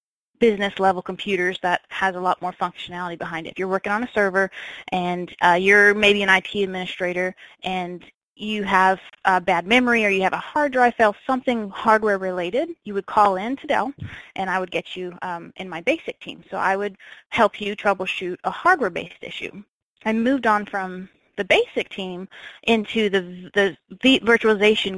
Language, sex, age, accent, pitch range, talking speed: English, female, 20-39, American, 185-225 Hz, 180 wpm